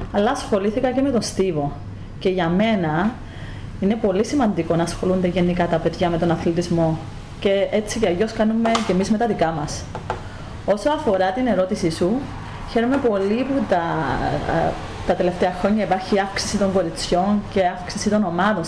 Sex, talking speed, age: female, 165 wpm, 30-49